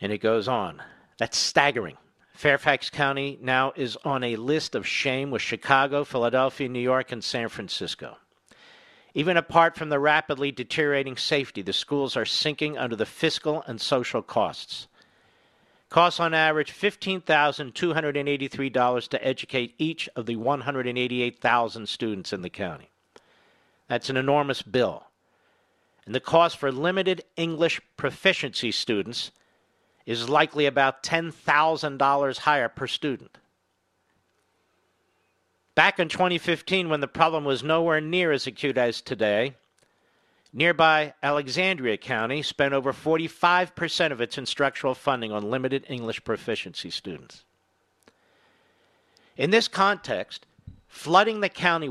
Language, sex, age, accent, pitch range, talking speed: English, male, 50-69, American, 130-160 Hz, 125 wpm